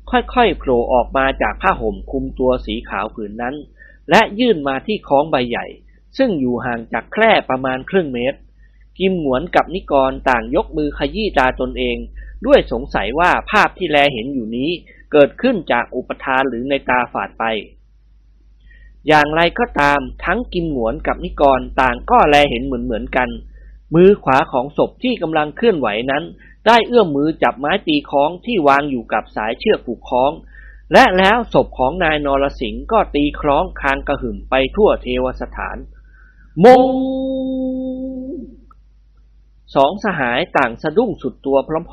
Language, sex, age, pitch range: Thai, male, 20-39, 125-195 Hz